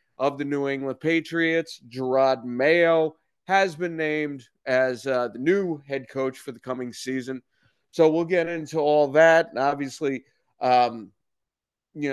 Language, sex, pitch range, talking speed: English, male, 130-165 Hz, 150 wpm